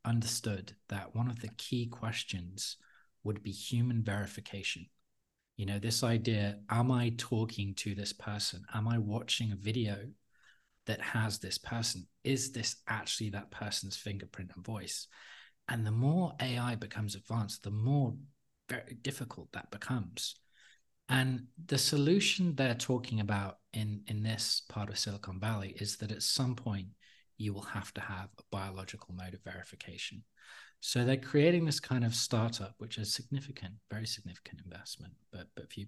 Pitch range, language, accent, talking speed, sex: 100-120 Hz, English, British, 155 wpm, male